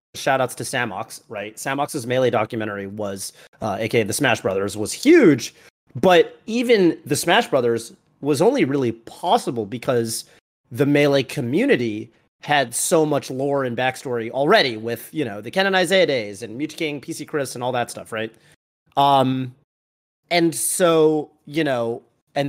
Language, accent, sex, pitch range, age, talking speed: English, American, male, 110-145 Hz, 30-49, 155 wpm